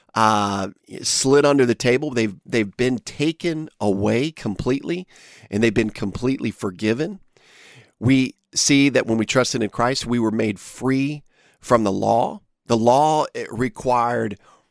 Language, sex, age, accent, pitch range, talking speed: English, male, 40-59, American, 110-130 Hz, 145 wpm